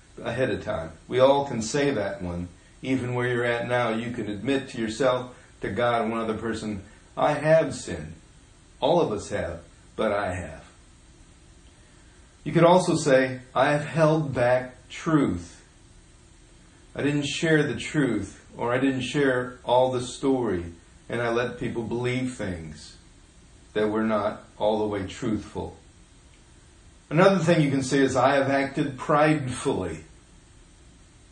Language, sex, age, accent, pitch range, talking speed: English, male, 40-59, American, 105-140 Hz, 150 wpm